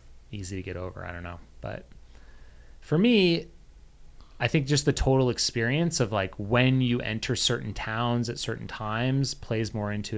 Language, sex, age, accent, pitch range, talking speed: English, male, 30-49, American, 100-125 Hz, 170 wpm